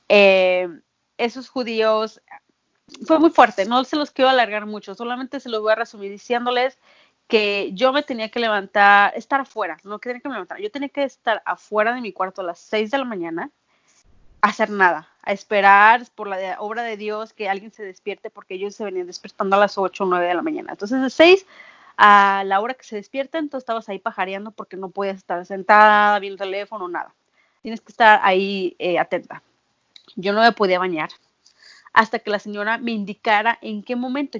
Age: 30-49